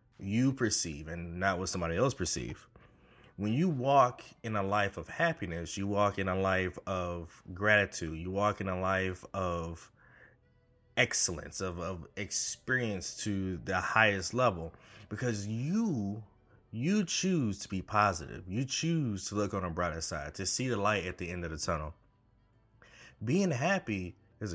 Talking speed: 160 wpm